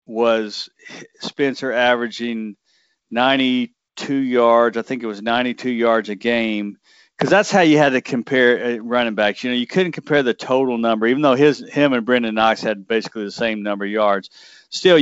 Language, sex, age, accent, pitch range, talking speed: English, male, 40-59, American, 110-130 Hz, 180 wpm